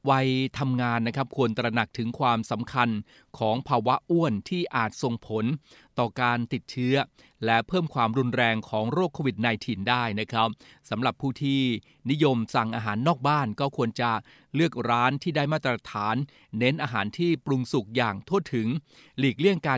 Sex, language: male, Thai